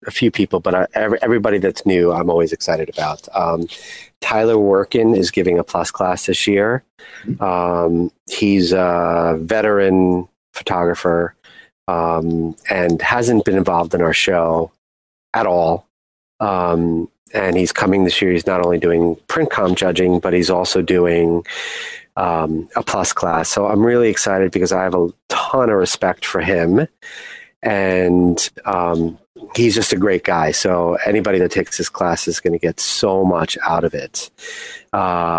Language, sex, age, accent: English, male, 30-49, American